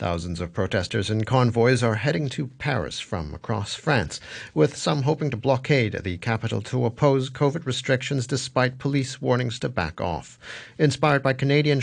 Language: English